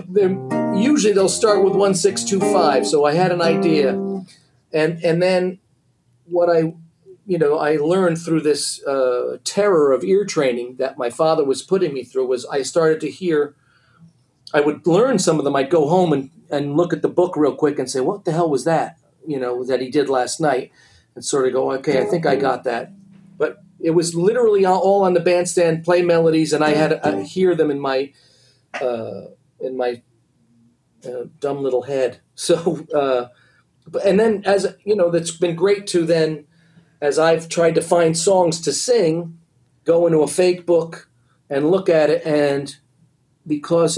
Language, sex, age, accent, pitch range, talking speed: English, male, 40-59, American, 135-180 Hz, 190 wpm